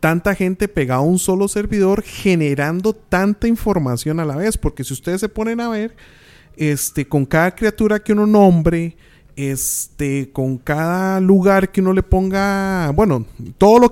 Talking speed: 165 wpm